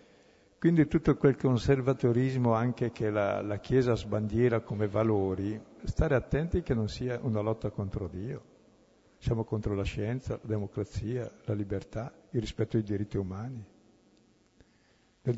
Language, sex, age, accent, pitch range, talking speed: Italian, male, 60-79, native, 105-120 Hz, 135 wpm